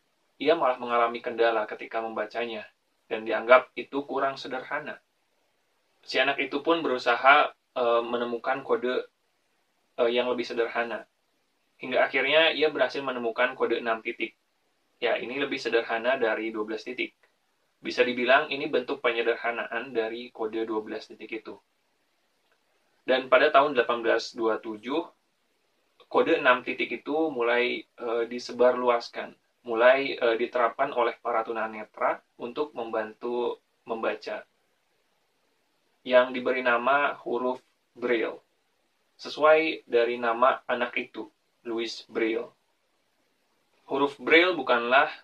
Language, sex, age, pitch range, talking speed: Indonesian, male, 20-39, 115-135 Hz, 110 wpm